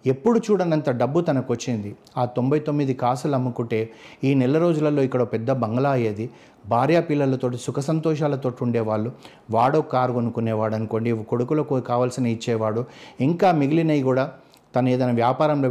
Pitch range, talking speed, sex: 120-145 Hz, 130 wpm, male